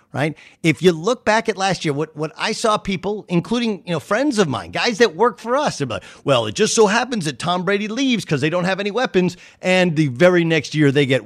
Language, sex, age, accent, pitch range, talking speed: English, male, 50-69, American, 170-235 Hz, 255 wpm